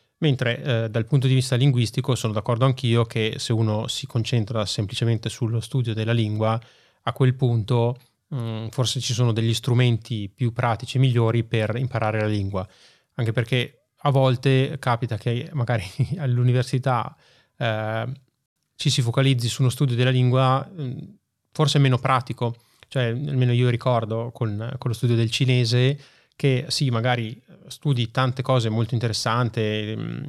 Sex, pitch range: male, 115-135 Hz